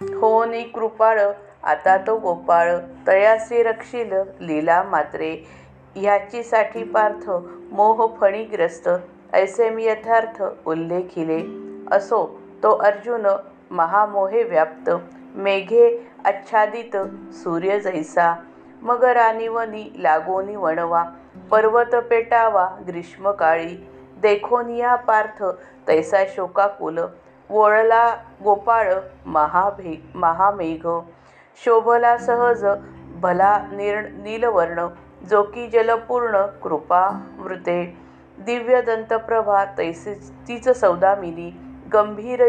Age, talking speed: 50-69, 75 wpm